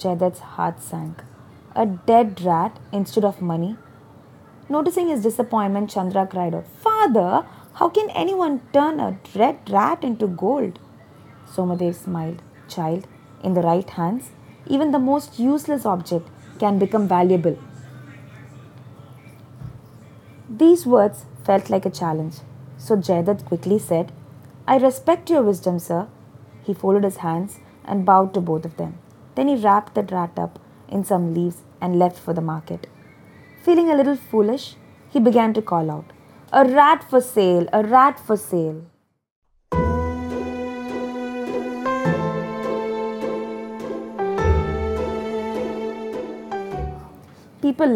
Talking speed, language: 120 wpm, English